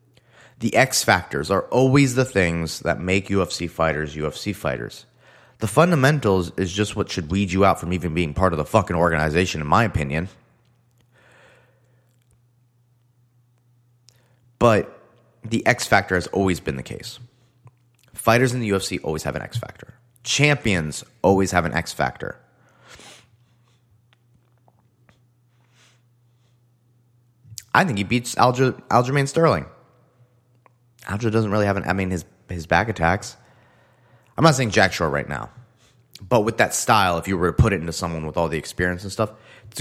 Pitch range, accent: 95-125 Hz, American